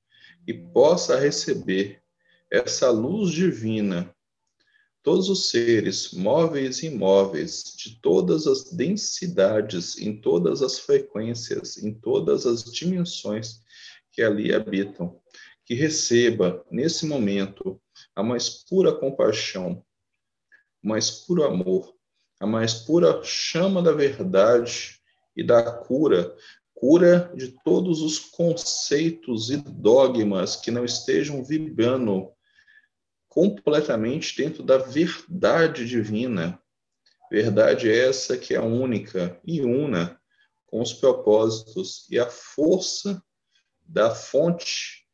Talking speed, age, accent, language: 105 wpm, 40-59, Brazilian, Portuguese